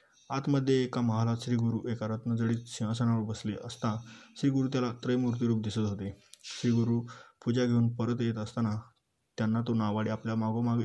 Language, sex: Marathi, male